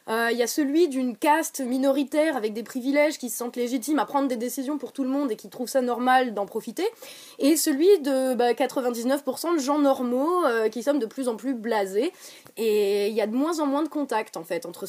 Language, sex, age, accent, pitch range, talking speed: French, female, 20-39, French, 250-325 Hz, 240 wpm